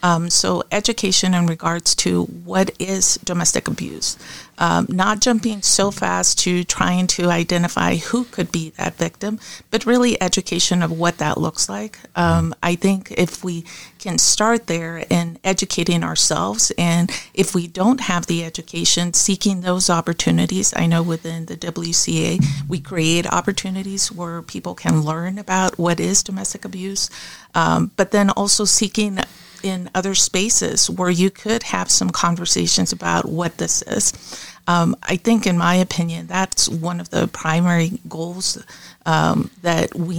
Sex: female